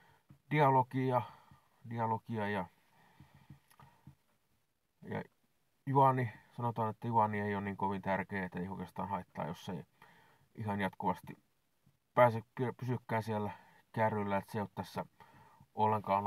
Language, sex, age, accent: Finnish, male, 30-49, native